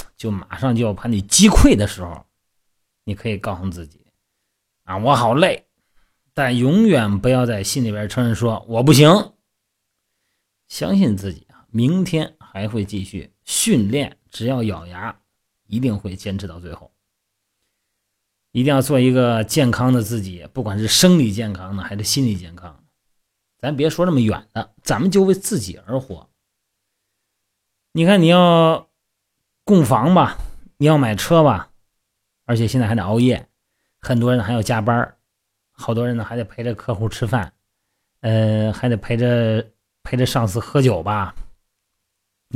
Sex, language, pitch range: male, Chinese, 100-130 Hz